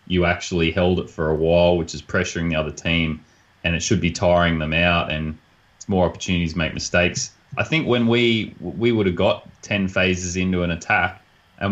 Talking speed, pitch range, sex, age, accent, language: 205 wpm, 90-105 Hz, male, 20-39, Australian, English